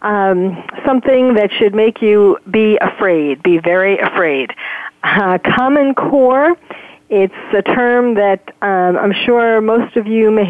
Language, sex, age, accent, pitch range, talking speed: English, female, 50-69, American, 200-245 Hz, 145 wpm